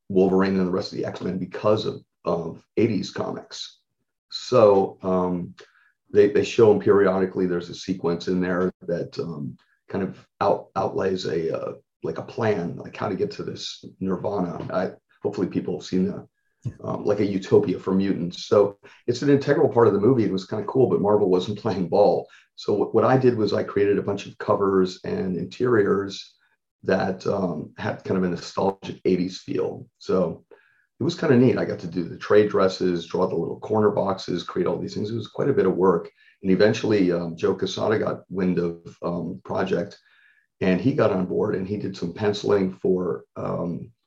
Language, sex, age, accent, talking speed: English, male, 40-59, American, 200 wpm